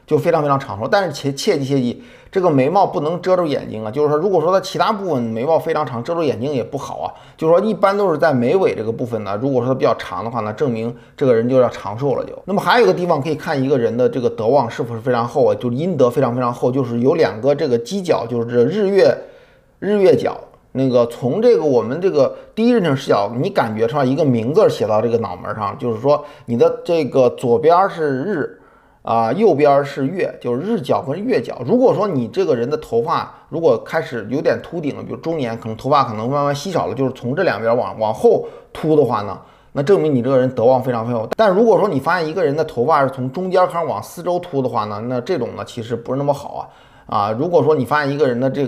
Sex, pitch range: male, 120-170 Hz